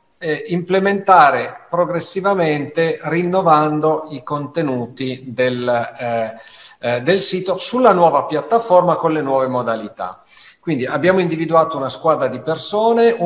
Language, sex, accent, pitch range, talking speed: Italian, male, native, 145-180 Hz, 100 wpm